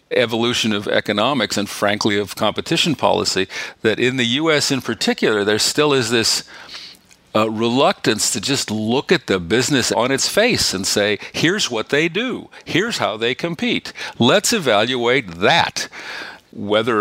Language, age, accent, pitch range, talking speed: English, 50-69, American, 105-135 Hz, 150 wpm